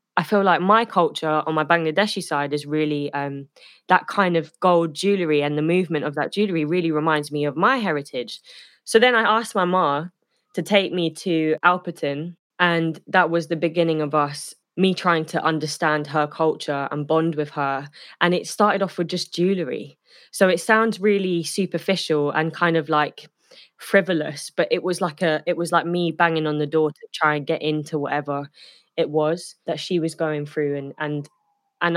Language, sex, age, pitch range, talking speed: English, female, 20-39, 150-180 Hz, 195 wpm